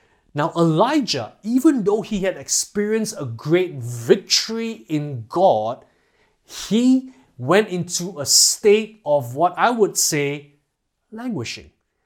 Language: English